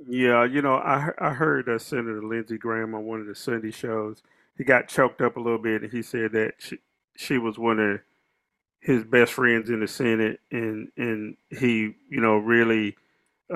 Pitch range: 110-130 Hz